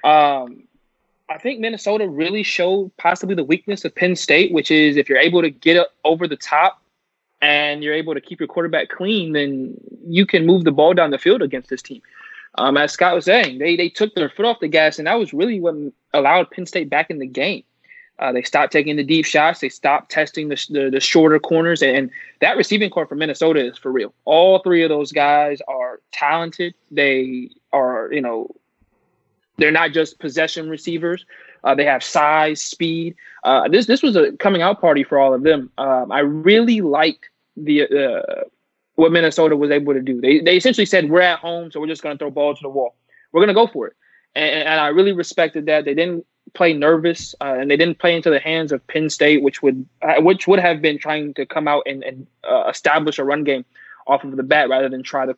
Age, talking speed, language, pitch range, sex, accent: 20-39, 225 wpm, English, 145-185 Hz, male, American